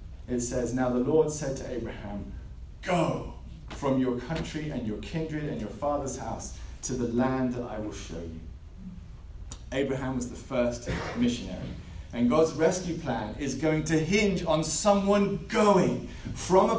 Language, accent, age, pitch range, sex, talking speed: English, British, 30-49, 115-160 Hz, male, 160 wpm